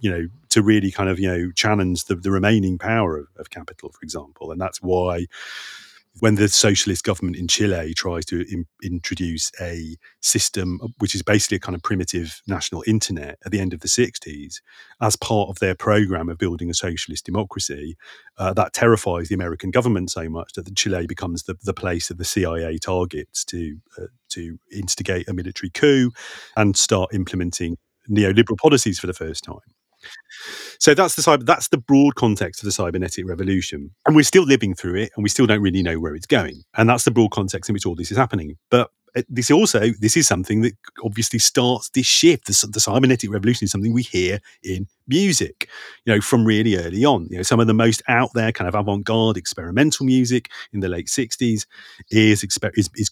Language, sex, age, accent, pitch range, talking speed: English, male, 40-59, British, 90-115 Hz, 200 wpm